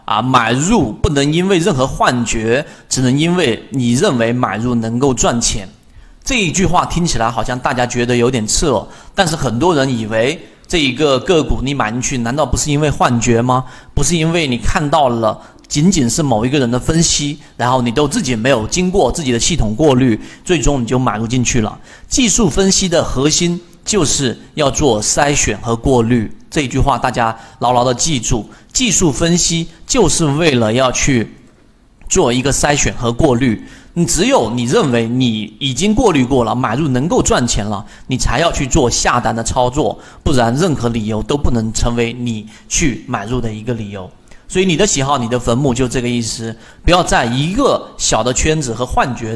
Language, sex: Chinese, male